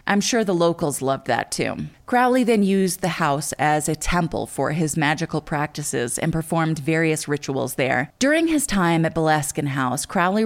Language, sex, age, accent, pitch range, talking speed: English, female, 20-39, American, 150-205 Hz, 180 wpm